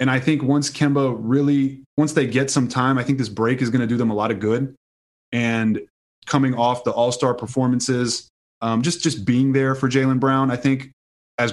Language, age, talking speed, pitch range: English, 20-39, 215 wpm, 115-135 Hz